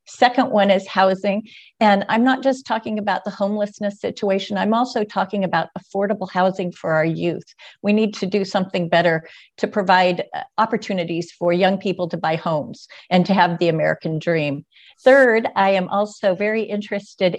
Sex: female